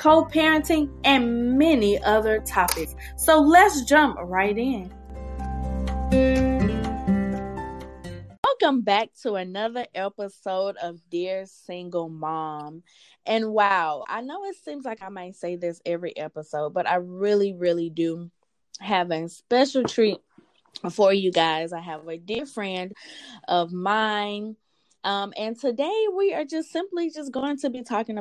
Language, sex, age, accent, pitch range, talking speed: English, female, 20-39, American, 170-225 Hz, 135 wpm